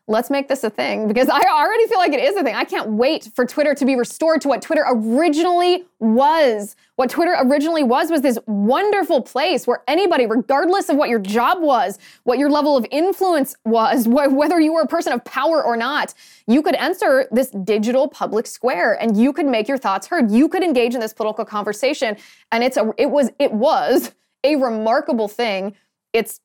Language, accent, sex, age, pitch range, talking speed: English, American, female, 20-39, 210-290 Hz, 205 wpm